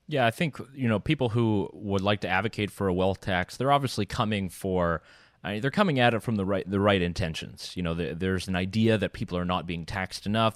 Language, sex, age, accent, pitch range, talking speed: English, male, 30-49, American, 95-120 Hz, 245 wpm